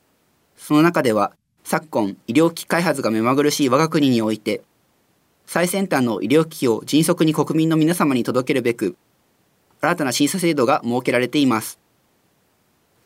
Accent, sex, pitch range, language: native, male, 125-165 Hz, Japanese